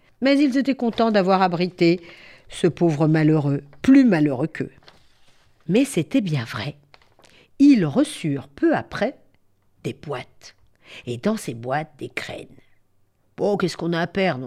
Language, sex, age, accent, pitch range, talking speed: French, female, 50-69, French, 140-225 Hz, 140 wpm